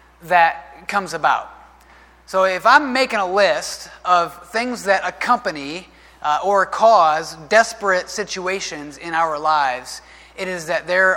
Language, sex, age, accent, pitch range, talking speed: English, male, 30-49, American, 180-225 Hz, 135 wpm